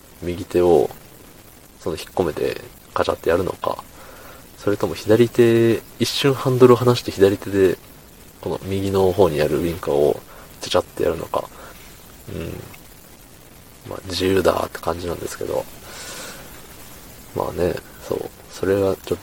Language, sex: Japanese, male